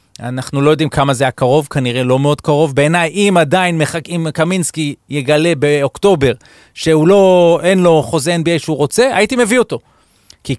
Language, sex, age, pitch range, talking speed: Hebrew, male, 30-49, 120-155 Hz, 155 wpm